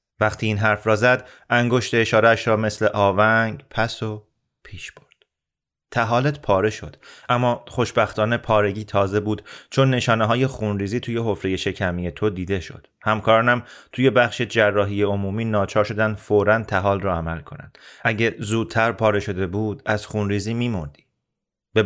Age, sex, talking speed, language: 30-49, male, 145 wpm, Persian